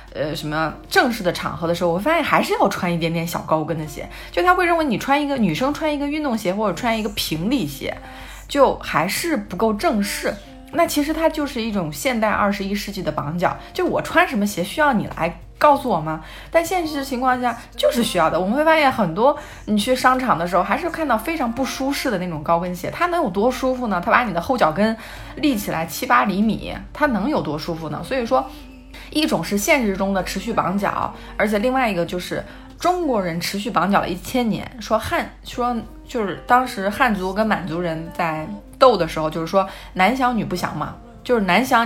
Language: Chinese